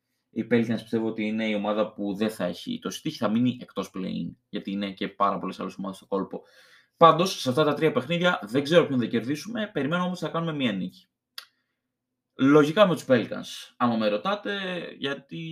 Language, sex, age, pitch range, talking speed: Greek, male, 20-39, 105-160 Hz, 195 wpm